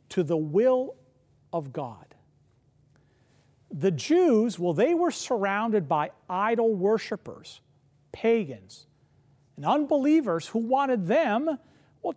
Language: English